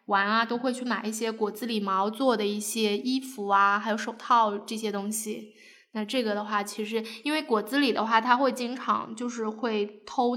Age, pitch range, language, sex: 10-29, 210-240 Hz, Chinese, female